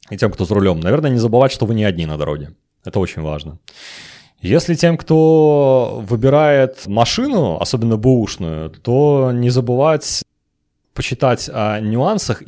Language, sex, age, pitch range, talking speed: Russian, male, 30-49, 90-130 Hz, 145 wpm